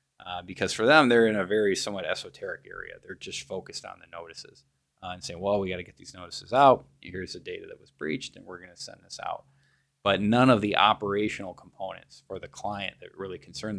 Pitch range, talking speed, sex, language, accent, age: 90-115 Hz, 230 wpm, male, English, American, 20-39